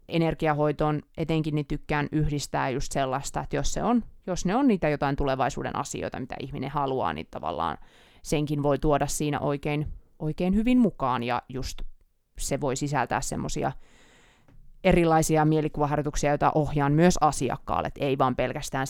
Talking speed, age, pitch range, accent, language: 145 wpm, 30-49, 145-195 Hz, native, Finnish